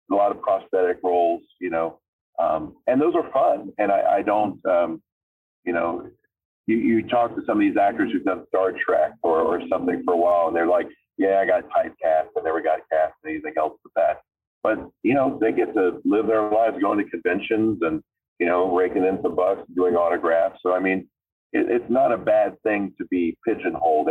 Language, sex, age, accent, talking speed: English, male, 40-59, American, 215 wpm